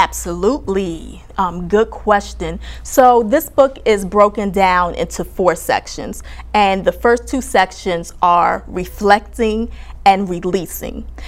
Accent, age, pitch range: American, 20-39, 185-220 Hz